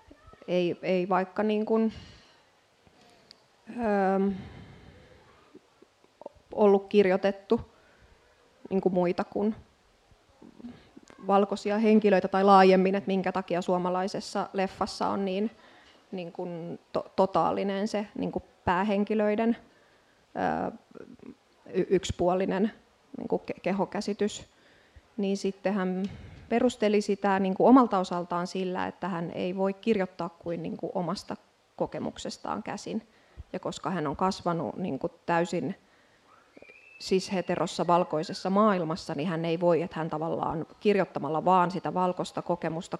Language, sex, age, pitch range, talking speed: Finnish, female, 20-39, 180-210 Hz, 110 wpm